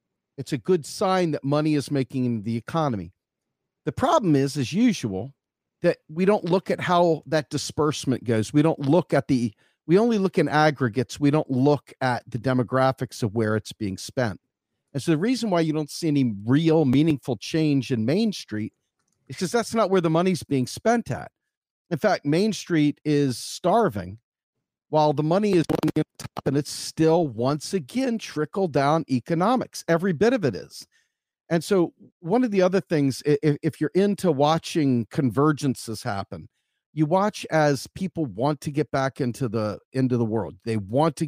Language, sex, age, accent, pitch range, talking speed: English, male, 40-59, American, 130-165 Hz, 180 wpm